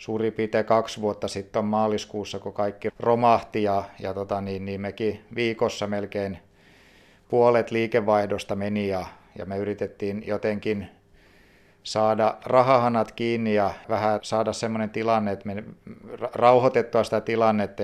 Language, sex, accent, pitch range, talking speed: Finnish, male, native, 100-115 Hz, 130 wpm